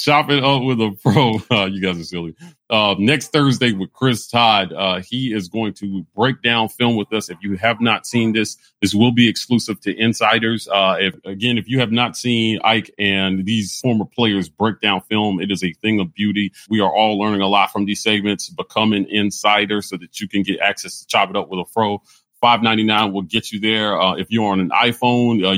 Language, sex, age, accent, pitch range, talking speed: English, male, 30-49, American, 100-115 Hz, 235 wpm